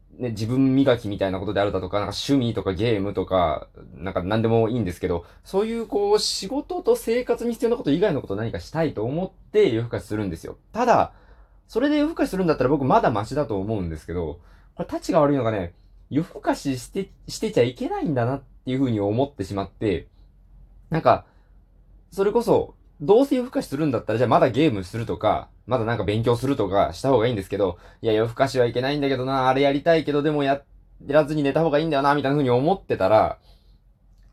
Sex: male